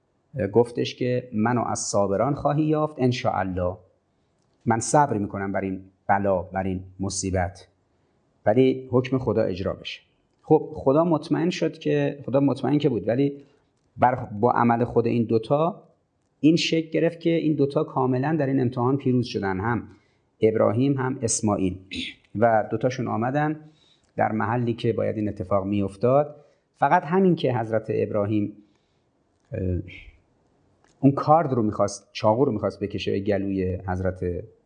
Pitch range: 100-135 Hz